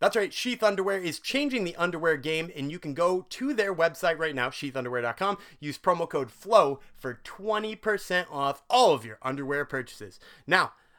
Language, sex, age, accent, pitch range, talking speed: English, male, 30-49, American, 145-210 Hz, 175 wpm